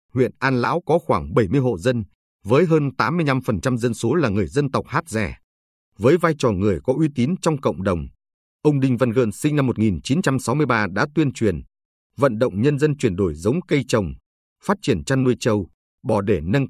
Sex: male